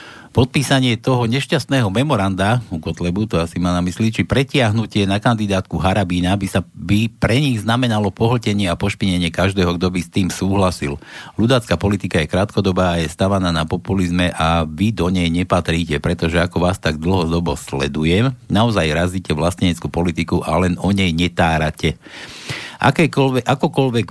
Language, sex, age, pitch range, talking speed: Slovak, male, 60-79, 85-110 Hz, 155 wpm